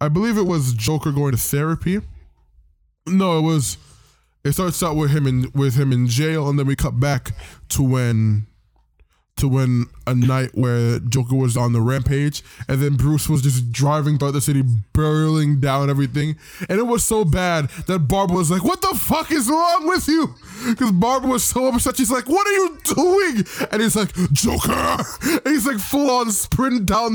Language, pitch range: English, 125-180 Hz